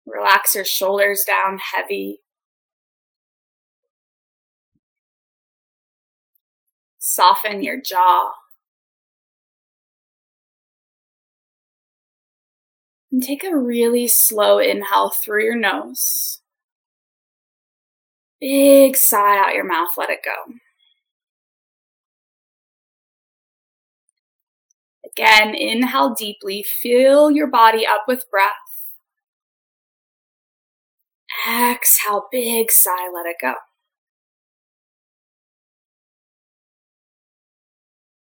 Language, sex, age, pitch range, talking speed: English, female, 20-39, 200-280 Hz, 60 wpm